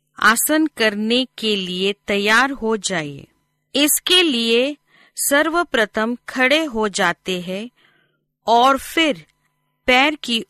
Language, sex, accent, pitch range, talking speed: Hindi, female, native, 200-270 Hz, 105 wpm